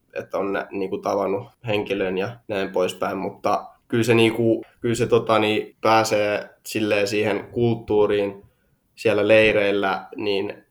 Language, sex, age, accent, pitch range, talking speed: Finnish, male, 20-39, native, 105-110 Hz, 140 wpm